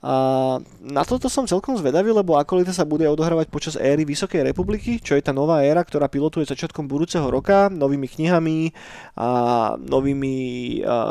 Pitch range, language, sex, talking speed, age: 135-155 Hz, Slovak, male, 160 wpm, 20-39